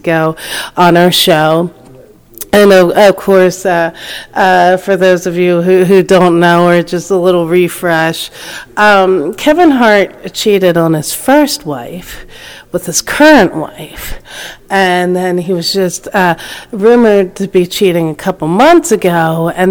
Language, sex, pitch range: English, female, 170-200 Hz